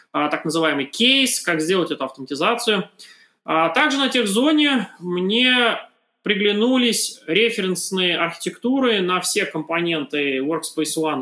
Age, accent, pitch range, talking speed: 20-39, native, 155-220 Hz, 110 wpm